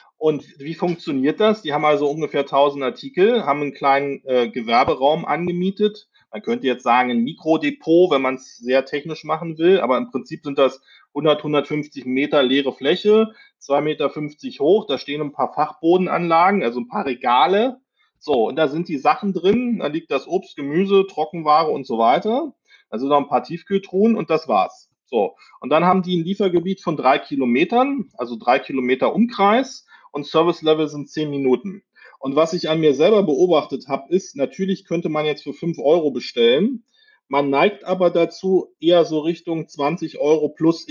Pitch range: 145-195 Hz